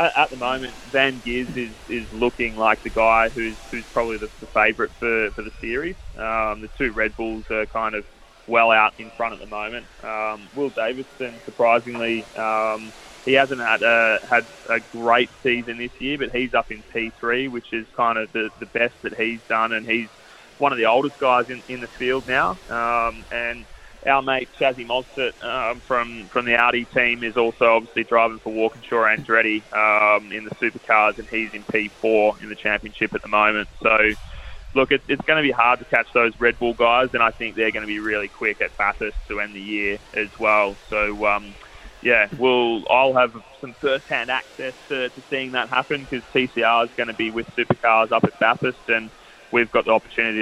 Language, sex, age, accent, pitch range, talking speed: English, male, 20-39, Australian, 110-120 Hz, 205 wpm